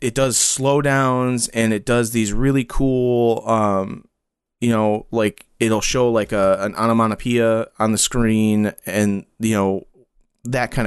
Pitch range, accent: 105-125 Hz, American